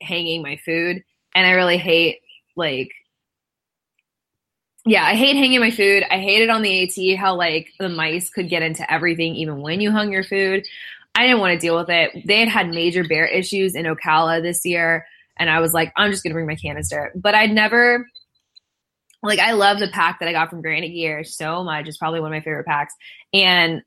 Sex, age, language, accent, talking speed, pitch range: female, 20-39, English, American, 210 wpm, 165-200 Hz